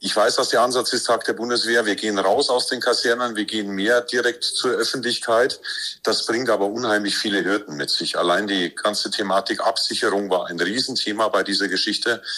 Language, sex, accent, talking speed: German, male, German, 195 wpm